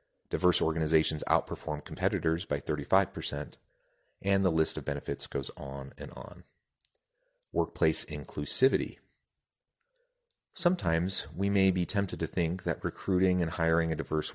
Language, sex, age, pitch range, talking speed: English, male, 30-49, 75-95 Hz, 125 wpm